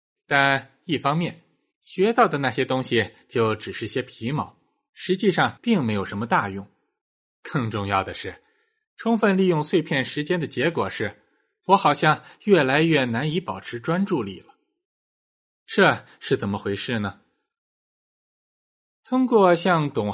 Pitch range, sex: 115-190 Hz, male